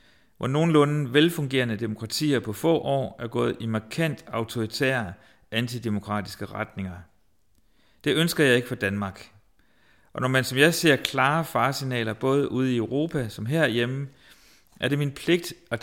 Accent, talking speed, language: native, 150 wpm, Danish